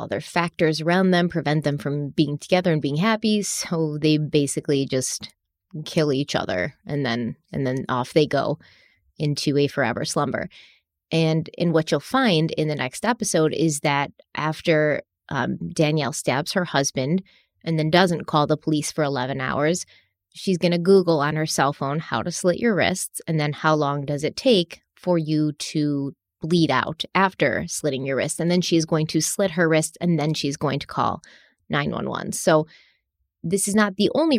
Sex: female